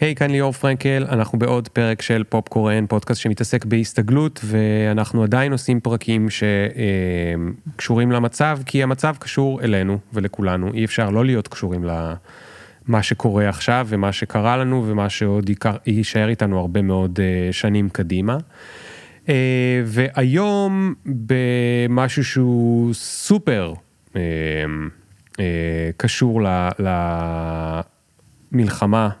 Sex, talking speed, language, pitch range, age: male, 105 wpm, Hebrew, 95-125 Hz, 30-49